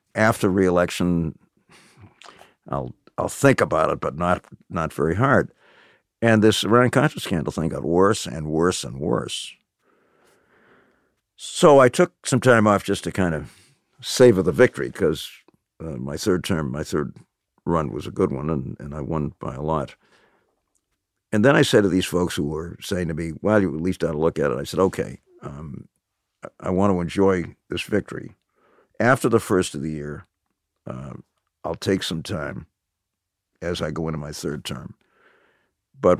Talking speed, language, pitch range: 175 wpm, English, 85-110 Hz